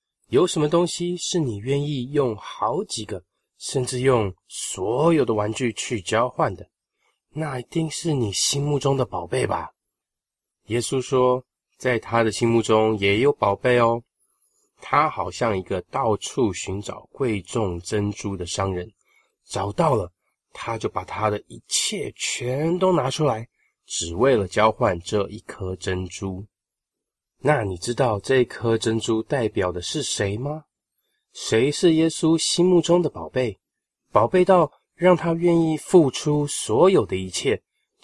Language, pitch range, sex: Chinese, 100-145 Hz, male